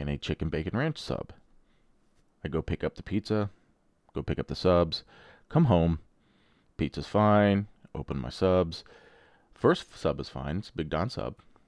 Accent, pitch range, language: American, 75-100 Hz, English